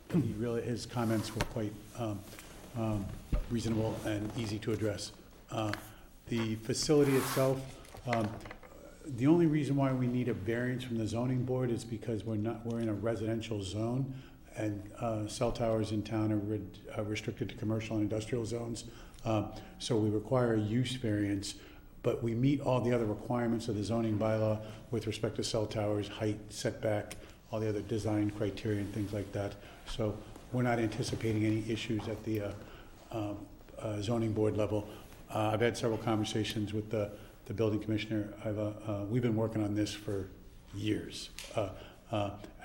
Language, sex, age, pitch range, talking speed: English, male, 50-69, 105-115 Hz, 170 wpm